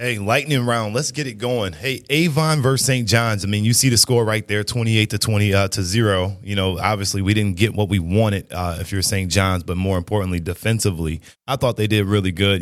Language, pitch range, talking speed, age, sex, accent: English, 95-120 Hz, 240 wpm, 20-39, male, American